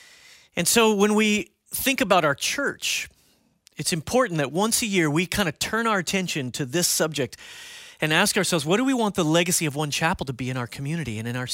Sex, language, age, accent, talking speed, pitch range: male, English, 30-49, American, 225 wpm, 155-220 Hz